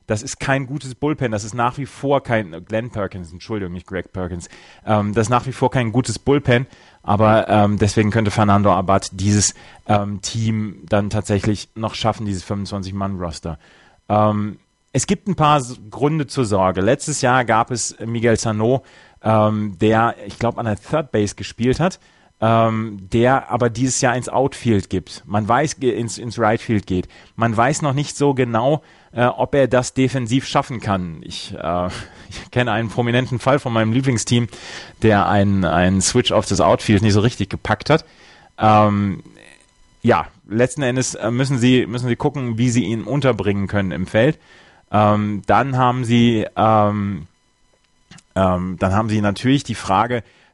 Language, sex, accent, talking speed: German, male, German, 165 wpm